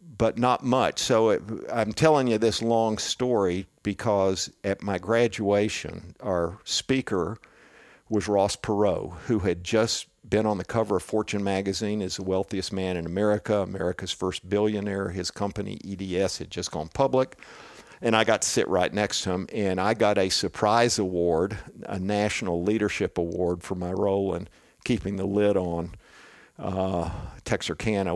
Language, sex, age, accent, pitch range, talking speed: English, male, 50-69, American, 95-110 Hz, 160 wpm